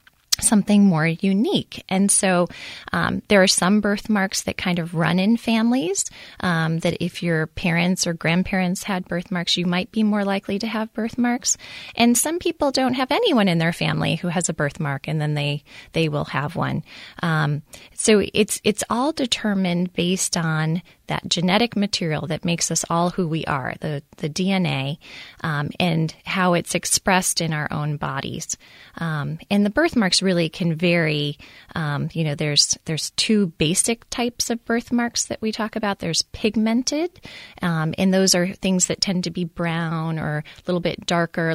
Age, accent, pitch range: 20-39, American, 160-200 Hz